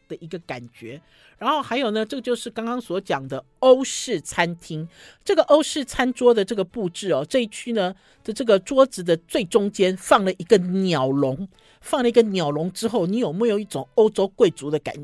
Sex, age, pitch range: male, 50-69, 155-230 Hz